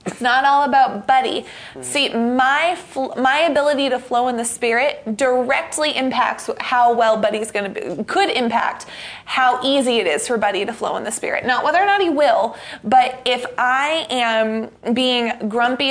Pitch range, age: 235-275 Hz, 20-39